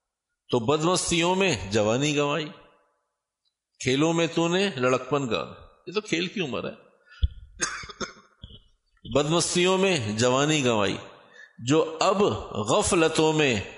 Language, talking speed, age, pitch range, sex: Urdu, 100 wpm, 50-69, 125-180 Hz, male